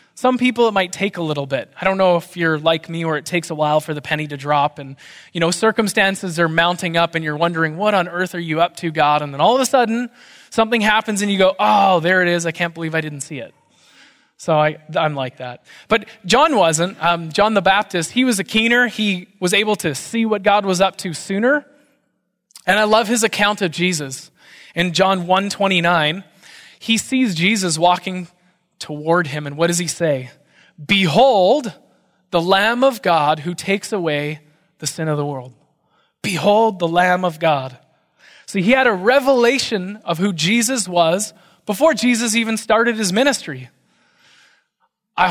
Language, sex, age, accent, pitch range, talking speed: English, male, 20-39, American, 160-210 Hz, 195 wpm